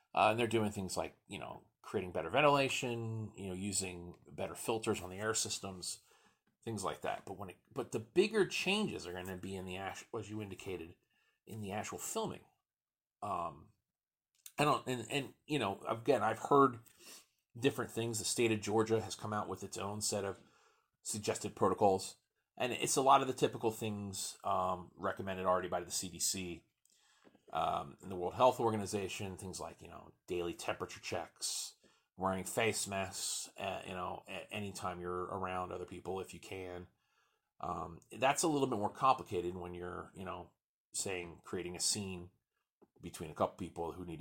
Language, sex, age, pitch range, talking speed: English, male, 30-49, 90-110 Hz, 180 wpm